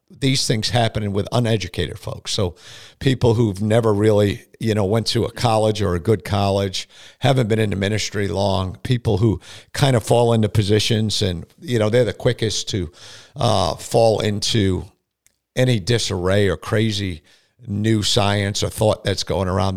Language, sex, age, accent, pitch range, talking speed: English, male, 50-69, American, 95-115 Hz, 165 wpm